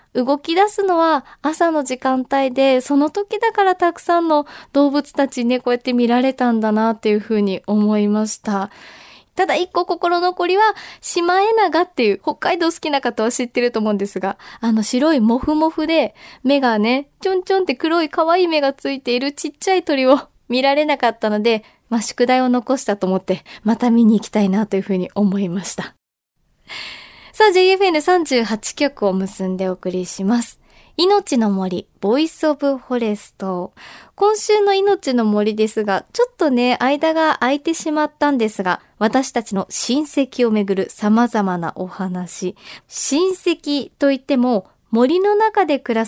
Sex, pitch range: female, 215-325 Hz